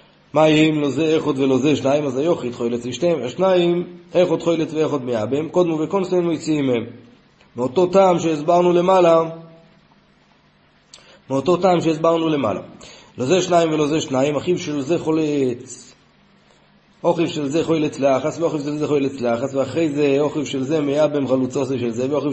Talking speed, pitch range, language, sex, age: 110 wpm, 130-165 Hz, Hebrew, male, 30-49